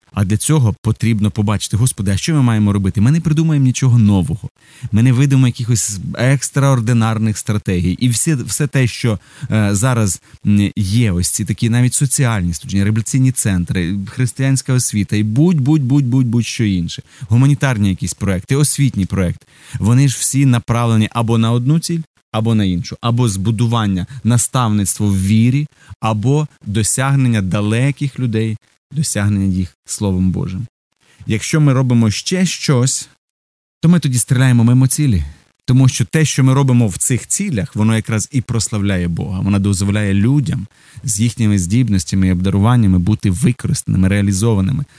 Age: 30-49